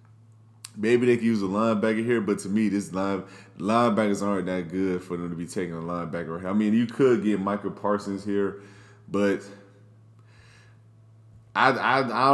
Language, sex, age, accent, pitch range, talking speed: English, male, 20-39, American, 100-120 Hz, 170 wpm